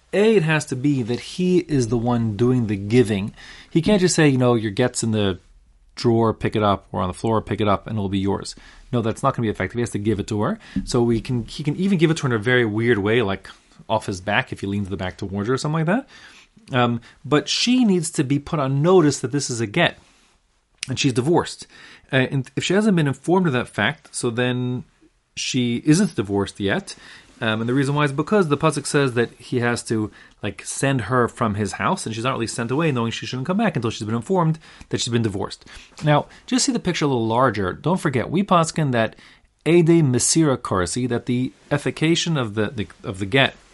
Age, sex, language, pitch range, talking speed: 30-49, male, English, 110-150 Hz, 245 wpm